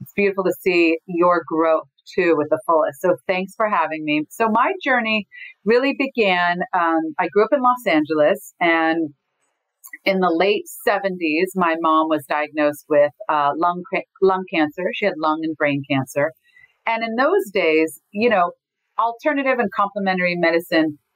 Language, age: English, 40-59